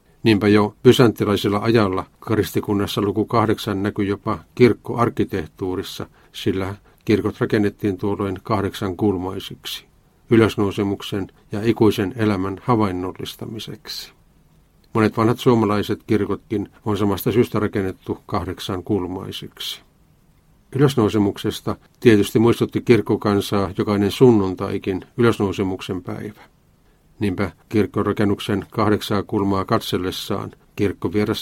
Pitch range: 95-110 Hz